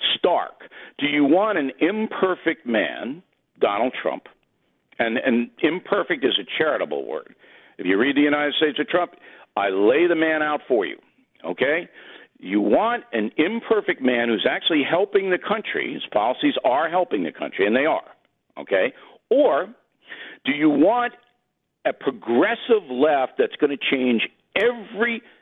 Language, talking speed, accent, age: English, 150 wpm, American, 60-79